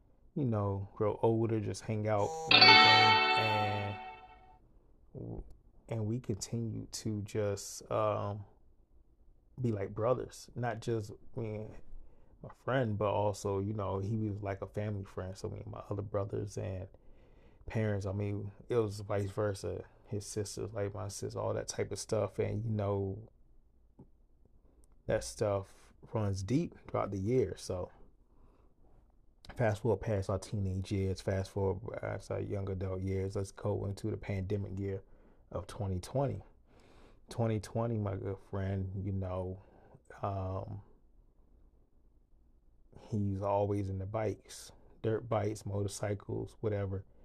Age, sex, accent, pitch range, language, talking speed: 20-39, male, American, 95-110 Hz, English, 140 wpm